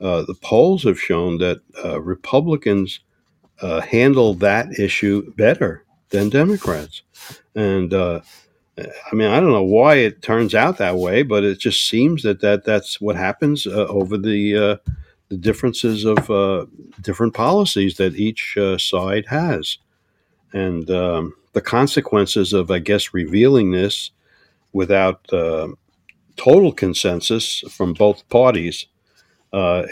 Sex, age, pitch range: male, 60-79, 90-105 Hz